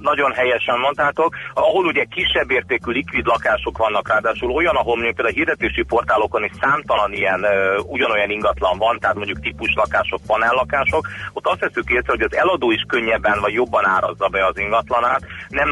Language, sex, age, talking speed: Hungarian, male, 30-49, 165 wpm